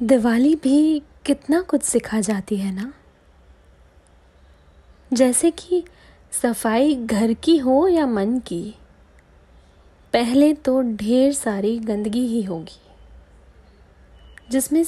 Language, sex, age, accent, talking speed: Hindi, female, 20-39, native, 100 wpm